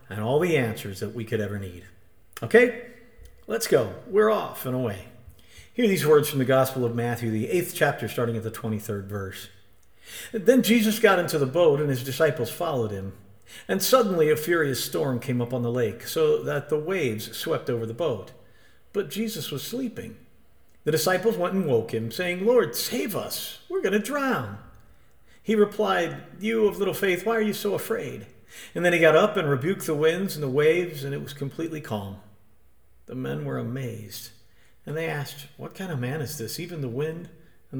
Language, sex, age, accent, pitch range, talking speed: English, male, 50-69, American, 115-180 Hz, 195 wpm